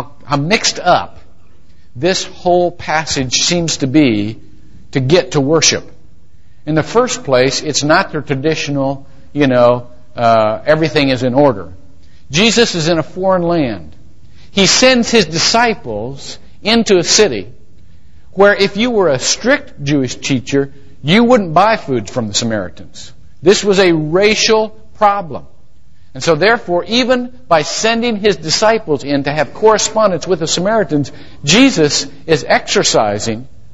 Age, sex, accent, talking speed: 50-69, male, American, 140 wpm